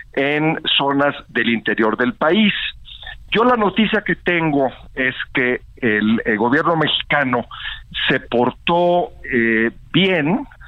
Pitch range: 115-155 Hz